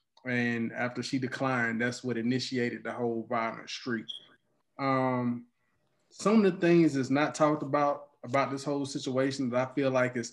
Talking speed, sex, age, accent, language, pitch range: 170 wpm, male, 20-39, American, English, 130-170 Hz